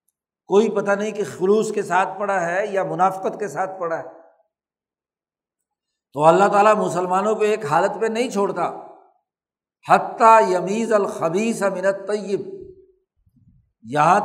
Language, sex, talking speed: Urdu, male, 125 wpm